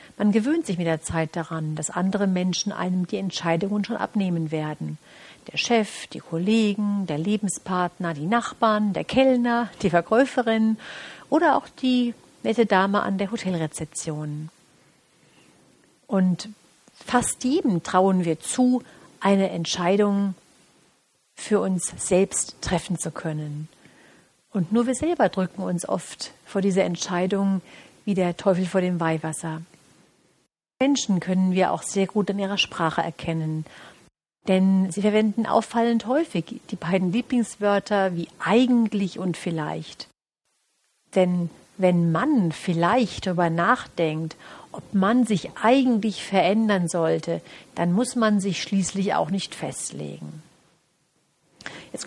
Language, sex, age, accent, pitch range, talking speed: German, female, 50-69, German, 170-215 Hz, 125 wpm